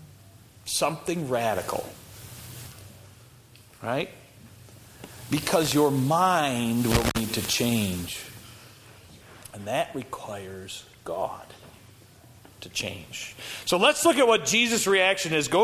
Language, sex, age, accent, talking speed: English, male, 40-59, American, 95 wpm